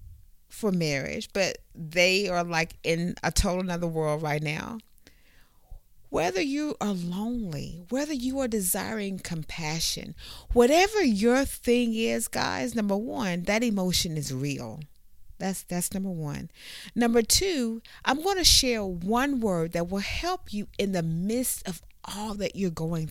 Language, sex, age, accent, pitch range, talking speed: English, female, 40-59, American, 175-245 Hz, 150 wpm